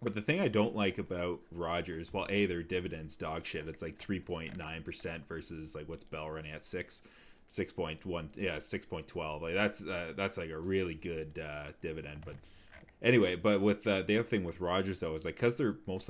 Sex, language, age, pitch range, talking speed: male, English, 30-49, 80-95 Hz, 225 wpm